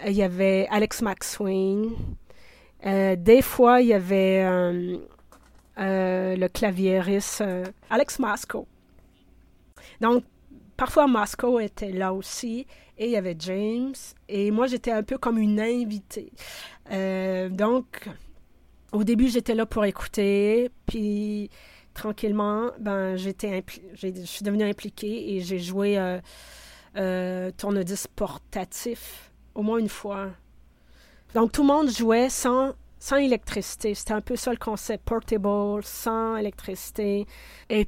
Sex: female